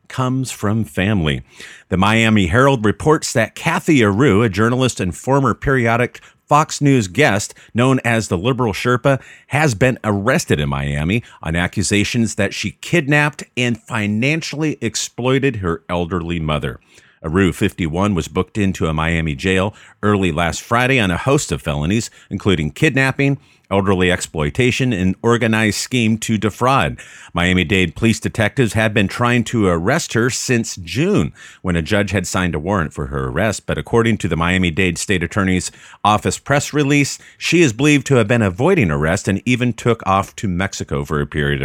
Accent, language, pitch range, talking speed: American, English, 95-125 Hz, 160 wpm